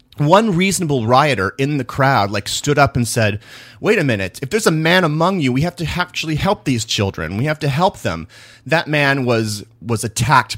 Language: English